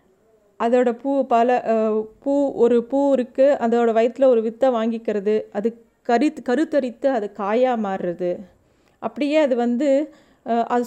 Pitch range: 220-275 Hz